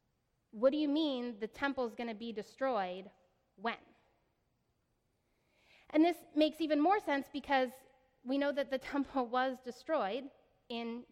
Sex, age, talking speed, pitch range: female, 20-39, 140 wpm, 210-270 Hz